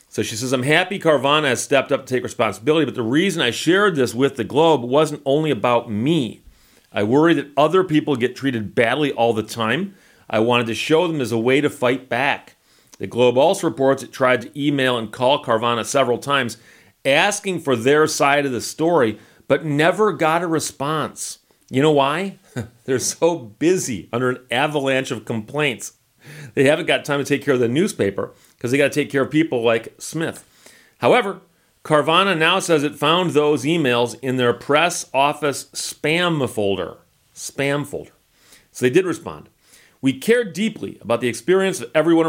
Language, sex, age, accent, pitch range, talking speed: English, male, 40-59, American, 125-165 Hz, 185 wpm